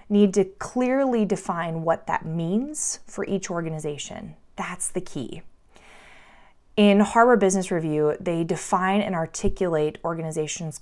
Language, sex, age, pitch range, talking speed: English, female, 20-39, 160-210 Hz, 120 wpm